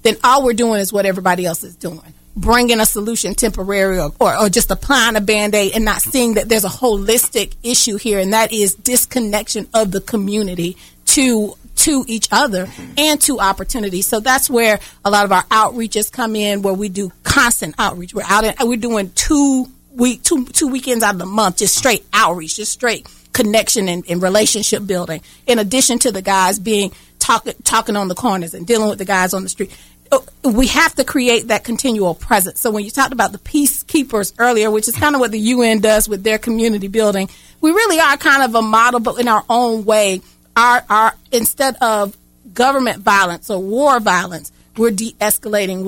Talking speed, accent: 200 wpm, American